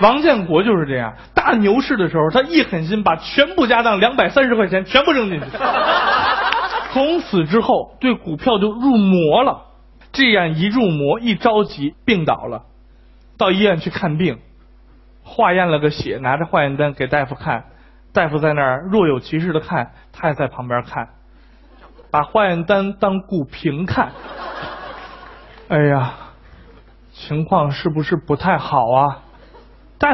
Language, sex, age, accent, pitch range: Chinese, male, 20-39, native, 155-250 Hz